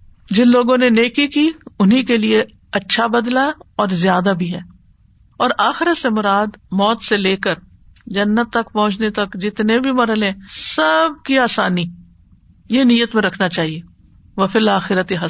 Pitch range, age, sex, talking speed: 190-265 Hz, 50-69, female, 155 wpm